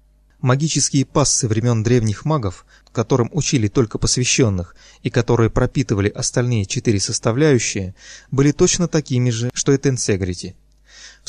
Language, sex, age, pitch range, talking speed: Russian, male, 20-39, 110-145 Hz, 120 wpm